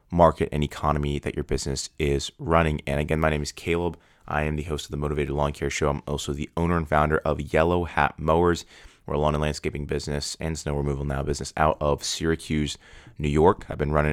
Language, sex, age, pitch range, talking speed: English, male, 20-39, 75-80 Hz, 225 wpm